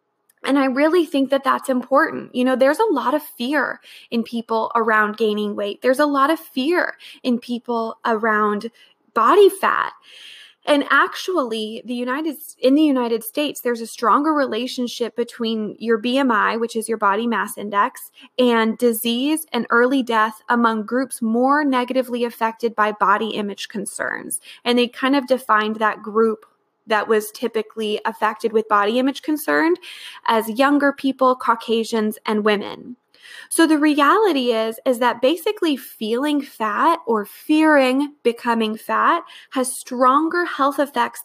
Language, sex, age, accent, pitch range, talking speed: English, female, 20-39, American, 225-285 Hz, 150 wpm